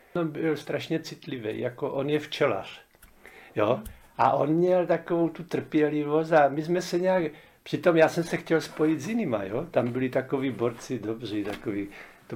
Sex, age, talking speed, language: male, 70-89, 165 wpm, Czech